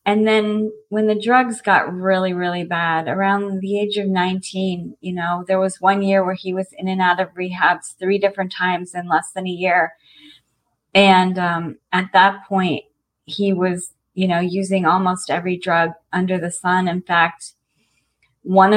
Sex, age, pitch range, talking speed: female, 30-49, 165-190 Hz, 175 wpm